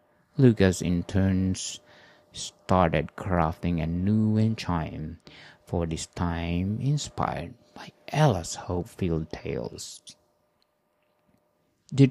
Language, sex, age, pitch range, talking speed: English, male, 50-69, 85-115 Hz, 90 wpm